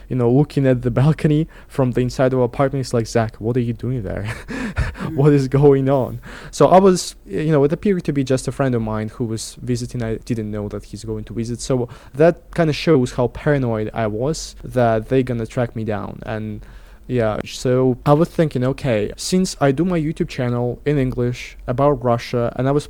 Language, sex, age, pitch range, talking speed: English, male, 20-39, 120-140 Hz, 225 wpm